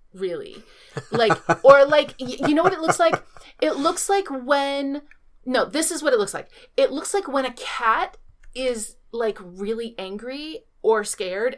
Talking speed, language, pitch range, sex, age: 170 wpm, English, 220-295 Hz, female, 30-49